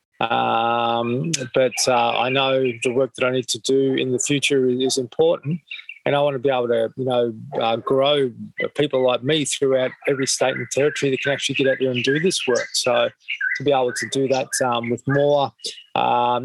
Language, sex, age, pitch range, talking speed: English, male, 20-39, 125-145 Hz, 210 wpm